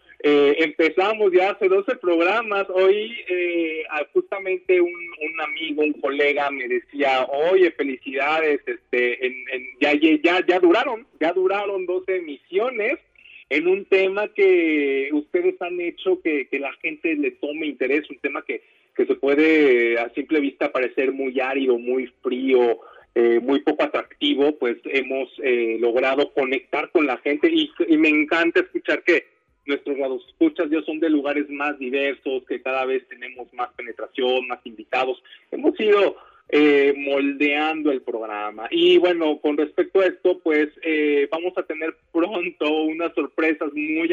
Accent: Mexican